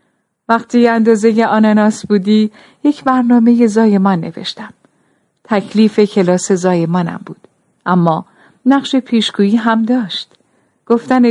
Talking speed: 95 wpm